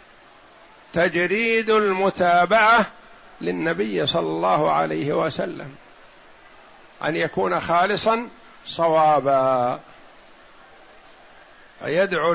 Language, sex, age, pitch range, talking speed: Arabic, male, 60-79, 170-205 Hz, 60 wpm